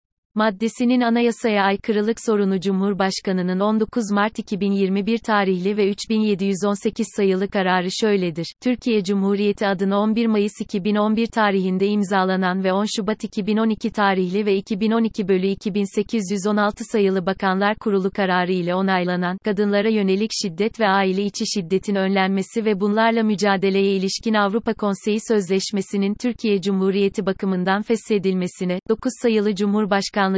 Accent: native